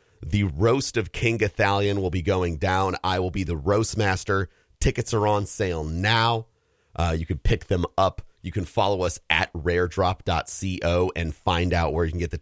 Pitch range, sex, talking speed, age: 90-110 Hz, male, 195 wpm, 40-59